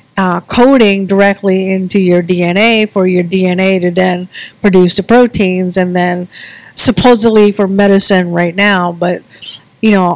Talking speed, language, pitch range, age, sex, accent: 140 wpm, English, 180-200 Hz, 50-69, female, American